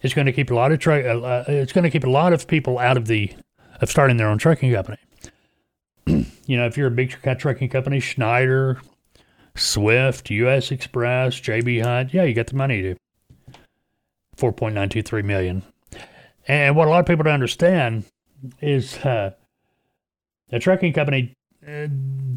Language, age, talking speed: English, 30-49, 180 wpm